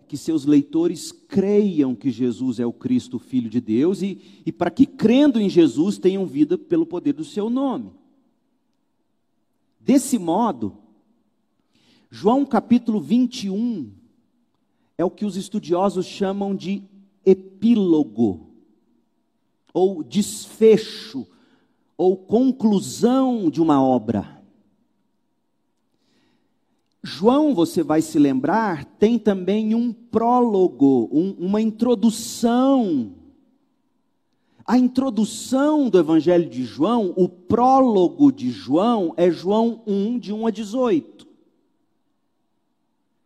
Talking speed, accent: 105 wpm, Brazilian